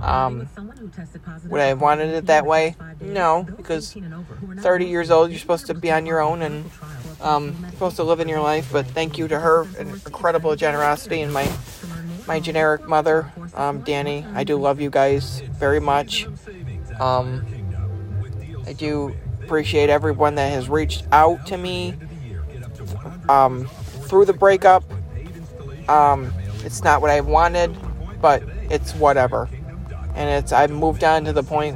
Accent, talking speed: American, 155 wpm